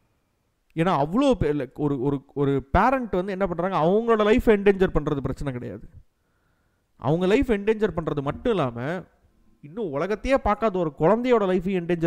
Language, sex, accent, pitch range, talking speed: Tamil, male, native, 125-170 Hz, 140 wpm